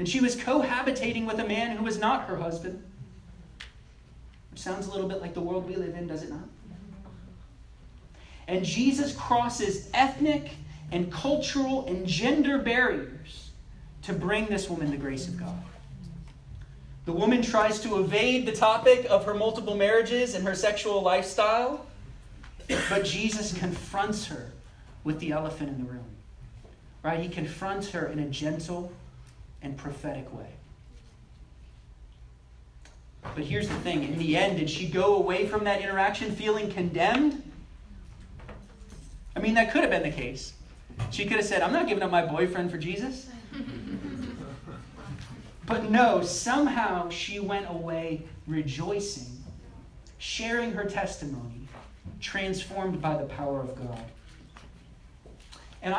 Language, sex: English, male